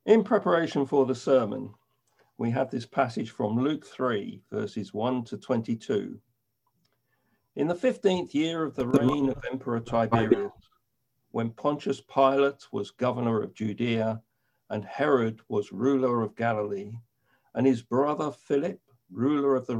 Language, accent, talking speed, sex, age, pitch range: English, British, 140 wpm, male, 50-69, 115-140 Hz